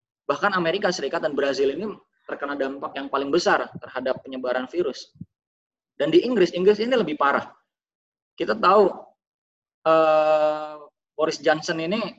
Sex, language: male, Indonesian